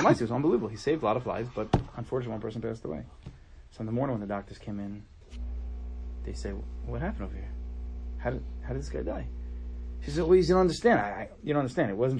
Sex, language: male, English